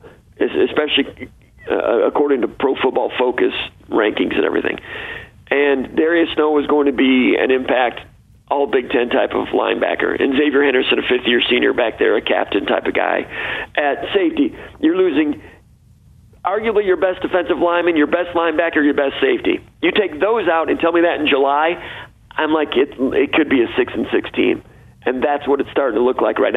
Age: 50-69